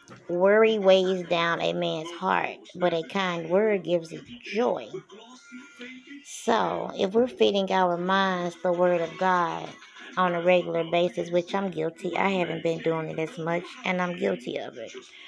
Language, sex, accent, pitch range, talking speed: English, female, American, 175-215 Hz, 165 wpm